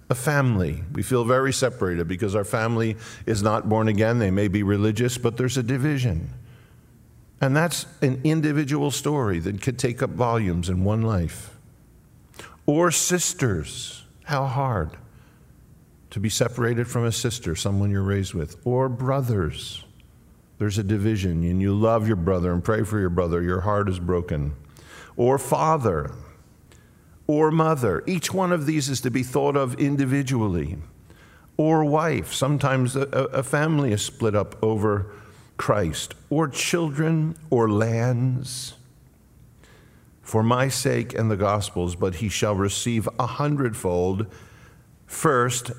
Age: 50-69